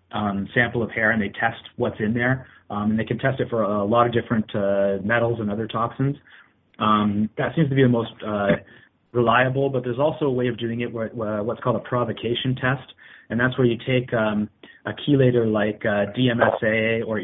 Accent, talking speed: American, 215 wpm